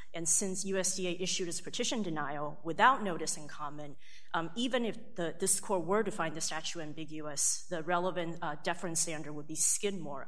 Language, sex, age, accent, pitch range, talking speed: English, female, 30-49, American, 165-200 Hz, 170 wpm